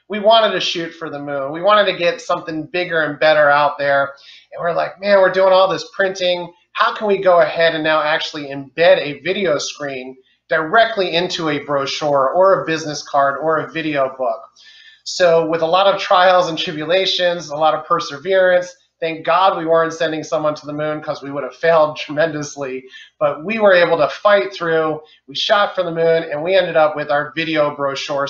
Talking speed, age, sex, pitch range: 205 wpm, 30-49, male, 145-180 Hz